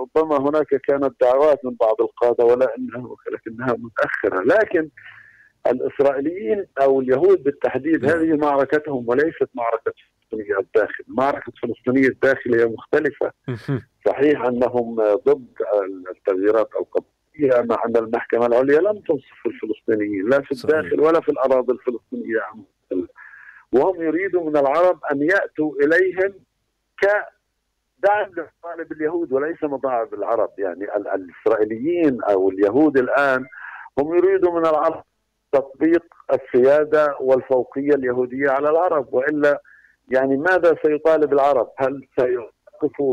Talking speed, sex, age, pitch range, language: 110 wpm, male, 50-69, 125-160 Hz, Arabic